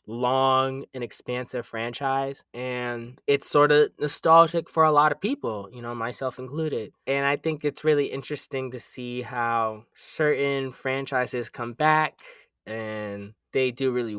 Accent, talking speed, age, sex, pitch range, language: American, 150 wpm, 20-39, male, 115-135 Hz, English